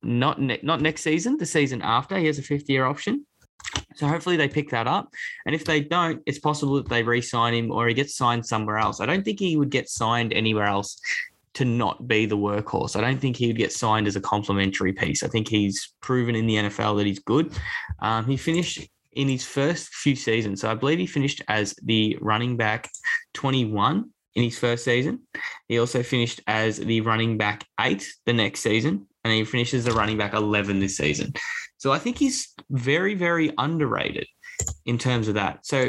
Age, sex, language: 10-29, male, English